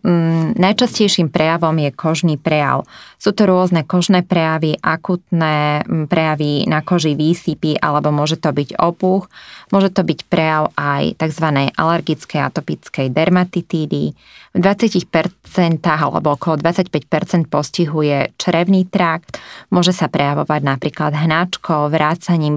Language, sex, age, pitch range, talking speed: Slovak, female, 20-39, 150-180 Hz, 115 wpm